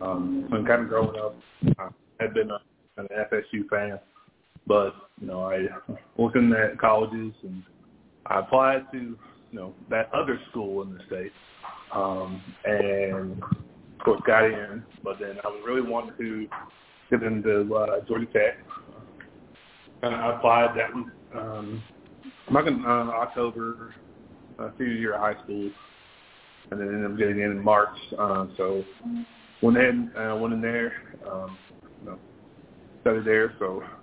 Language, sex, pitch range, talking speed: English, male, 100-120 Hz, 155 wpm